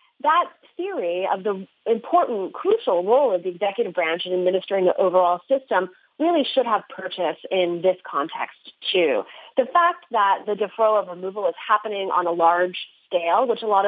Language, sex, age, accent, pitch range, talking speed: English, female, 30-49, American, 180-255 Hz, 175 wpm